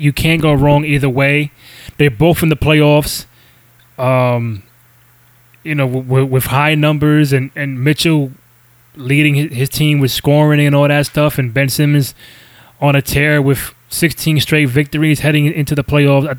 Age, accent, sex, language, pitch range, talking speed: 20-39, American, male, English, 130-155 Hz, 170 wpm